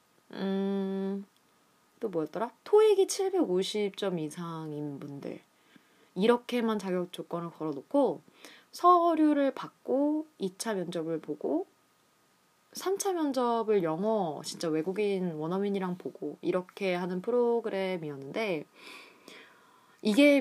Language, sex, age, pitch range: Korean, female, 20-39, 165-245 Hz